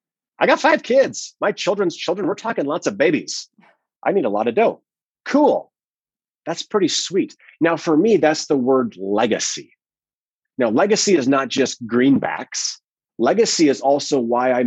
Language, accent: English, American